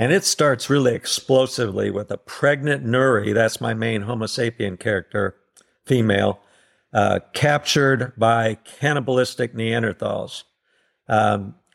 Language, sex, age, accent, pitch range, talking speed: English, male, 50-69, American, 115-140 Hz, 110 wpm